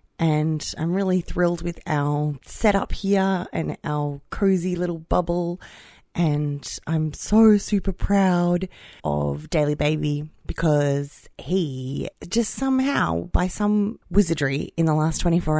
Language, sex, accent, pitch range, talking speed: English, female, Australian, 150-180 Hz, 125 wpm